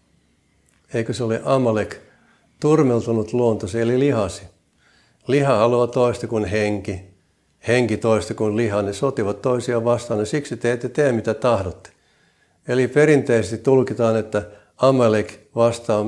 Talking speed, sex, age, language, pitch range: 125 wpm, male, 60-79, Finnish, 105-130 Hz